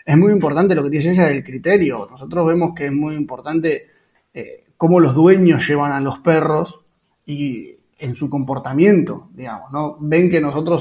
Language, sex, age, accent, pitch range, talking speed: Spanish, male, 20-39, Argentinian, 140-170 Hz, 180 wpm